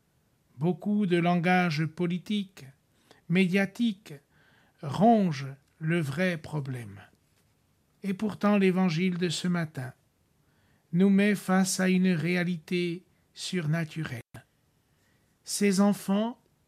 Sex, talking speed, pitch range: male, 85 wpm, 150-190 Hz